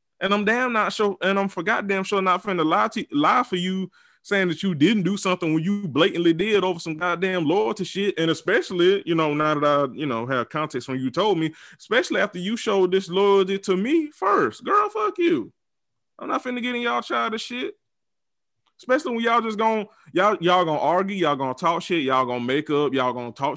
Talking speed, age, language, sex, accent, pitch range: 225 wpm, 20-39, English, male, American, 150-225 Hz